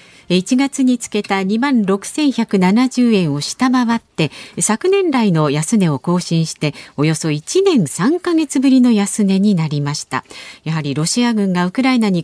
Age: 40-59